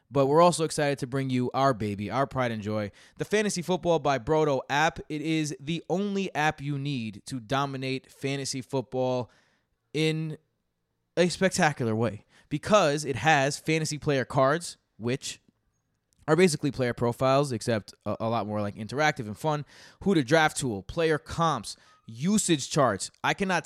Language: English